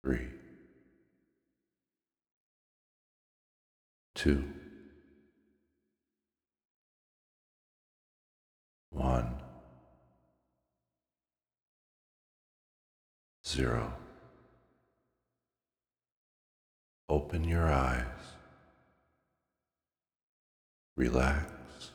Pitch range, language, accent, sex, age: 65-75 Hz, English, American, male, 50-69